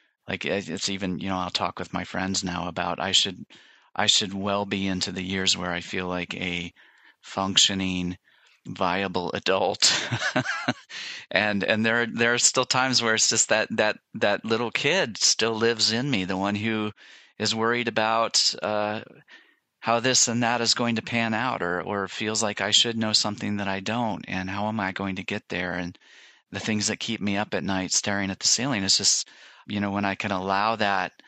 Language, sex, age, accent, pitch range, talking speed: English, male, 30-49, American, 90-105 Hz, 205 wpm